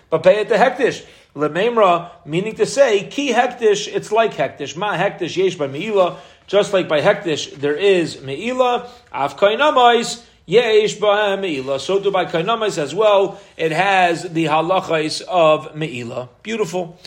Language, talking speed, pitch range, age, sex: English, 135 wpm, 155-200 Hz, 40-59, male